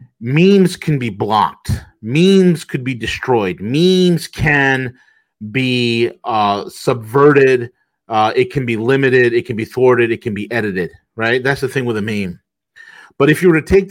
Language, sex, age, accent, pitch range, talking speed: English, male, 30-49, American, 120-170 Hz, 170 wpm